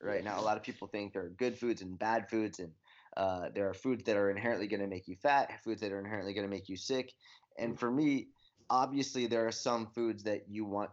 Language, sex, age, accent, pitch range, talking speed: English, male, 20-39, American, 100-120 Hz, 260 wpm